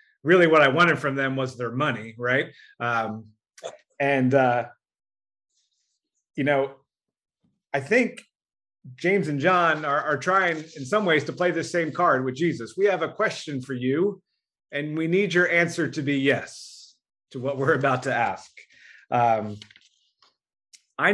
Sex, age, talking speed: male, 30-49, 155 wpm